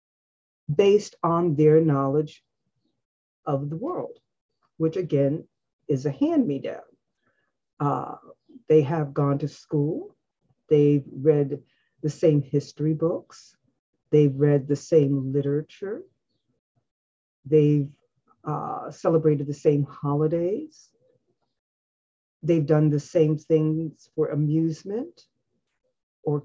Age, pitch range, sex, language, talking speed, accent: 50-69, 145-190 Hz, female, English, 95 wpm, American